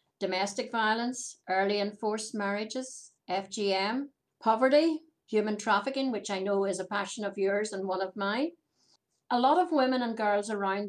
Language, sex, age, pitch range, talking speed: English, female, 60-79, 195-230 Hz, 160 wpm